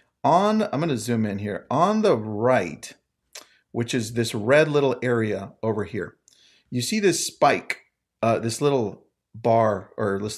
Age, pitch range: 40-59, 110-155 Hz